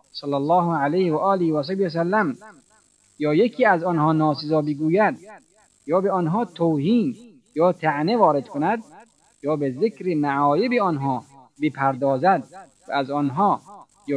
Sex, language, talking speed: male, Persian, 130 wpm